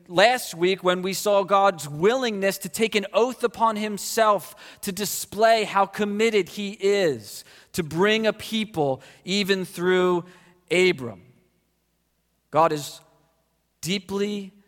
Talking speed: 120 wpm